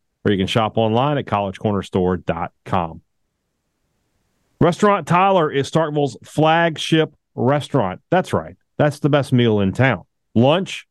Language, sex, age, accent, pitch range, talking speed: English, male, 40-59, American, 110-150 Hz, 120 wpm